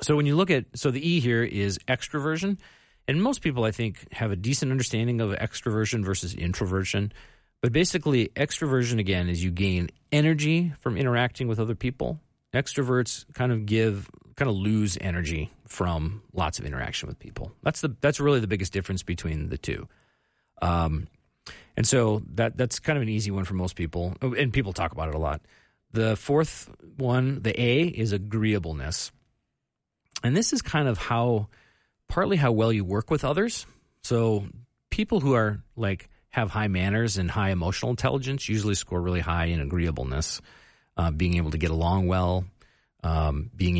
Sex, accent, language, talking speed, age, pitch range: male, American, English, 175 wpm, 40-59, 95-130 Hz